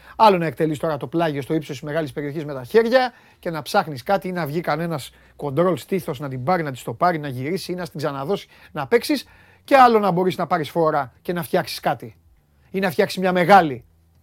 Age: 30-49